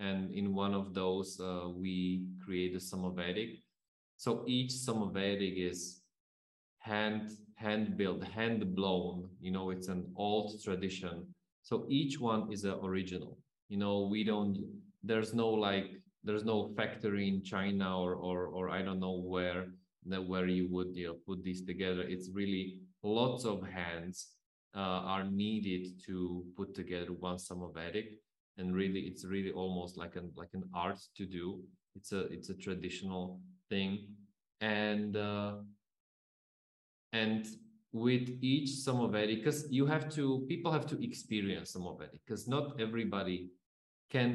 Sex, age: male, 20-39